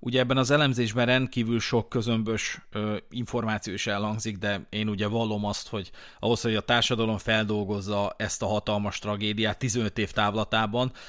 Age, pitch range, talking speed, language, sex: 30-49, 105-130 Hz, 155 wpm, Hungarian, male